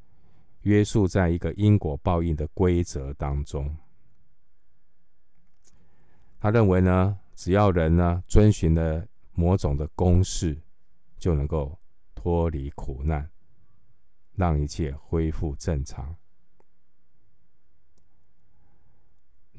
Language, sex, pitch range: Chinese, male, 75-95 Hz